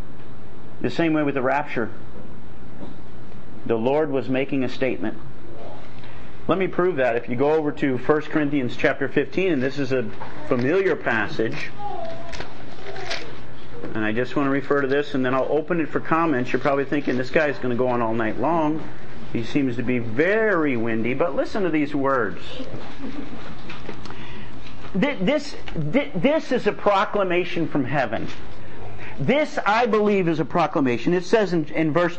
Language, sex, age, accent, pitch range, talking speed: English, male, 50-69, American, 140-215 Hz, 165 wpm